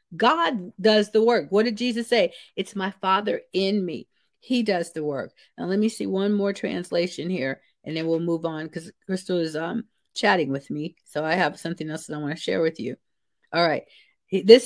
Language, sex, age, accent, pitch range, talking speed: English, female, 50-69, American, 175-220 Hz, 215 wpm